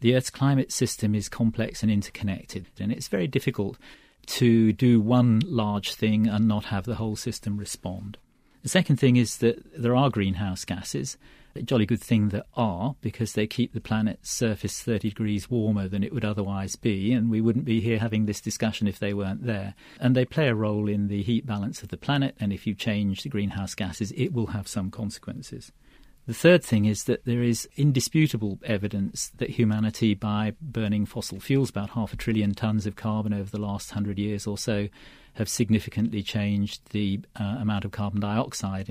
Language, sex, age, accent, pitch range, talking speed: English, male, 40-59, British, 100-115 Hz, 195 wpm